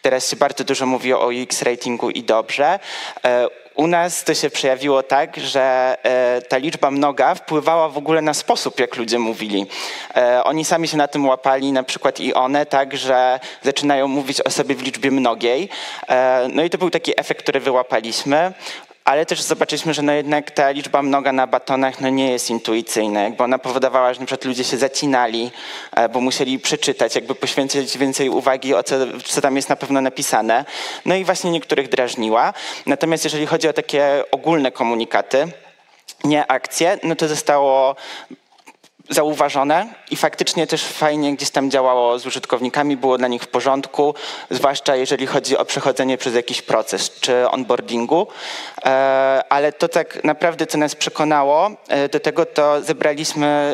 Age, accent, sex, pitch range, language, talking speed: 20-39, native, male, 130-150 Hz, Polish, 160 wpm